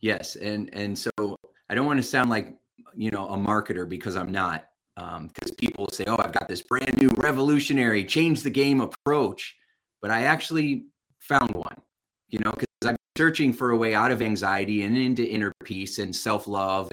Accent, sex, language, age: American, male, English, 30-49